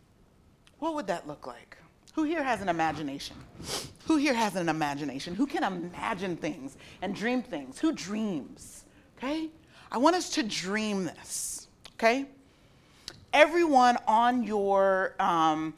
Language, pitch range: English, 190-275 Hz